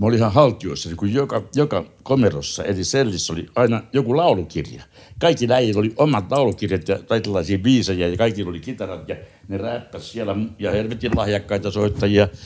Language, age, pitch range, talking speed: Finnish, 60-79, 100-120 Hz, 165 wpm